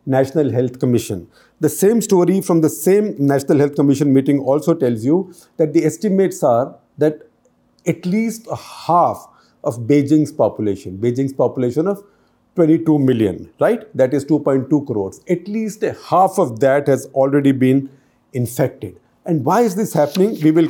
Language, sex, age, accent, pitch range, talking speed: English, male, 50-69, Indian, 130-170 Hz, 155 wpm